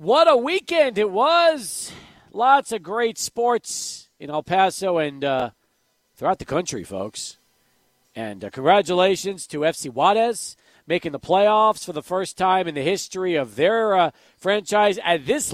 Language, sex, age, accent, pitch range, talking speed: English, male, 40-59, American, 165-215 Hz, 155 wpm